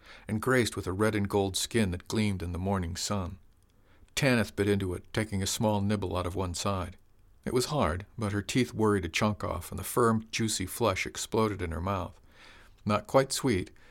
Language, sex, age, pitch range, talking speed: English, male, 50-69, 95-110 Hz, 200 wpm